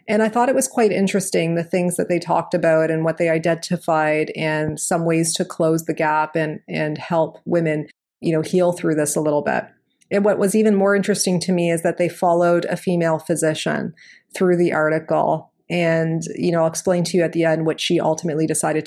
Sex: female